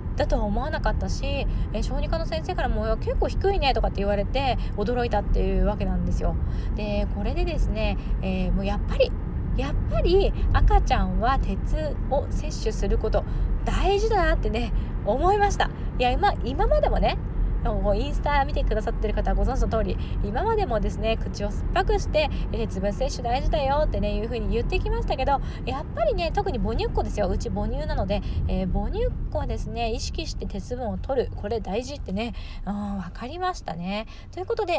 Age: 20-39